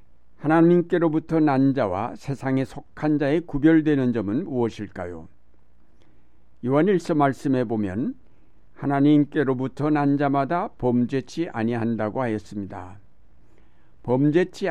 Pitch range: 110-145 Hz